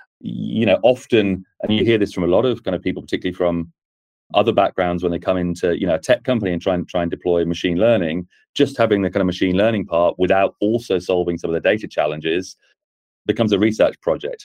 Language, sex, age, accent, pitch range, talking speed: English, male, 30-49, British, 85-105 Hz, 230 wpm